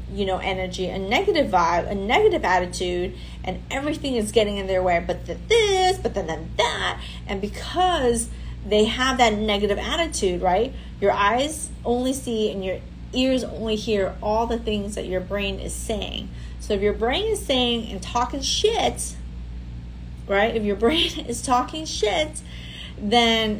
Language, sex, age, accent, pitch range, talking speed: English, female, 30-49, American, 180-240 Hz, 165 wpm